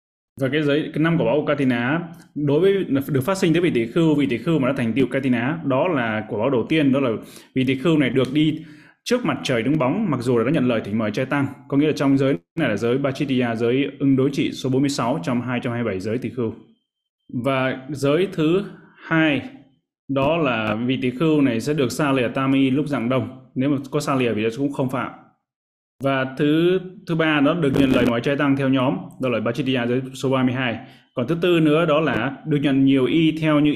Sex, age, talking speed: male, 20-39, 235 wpm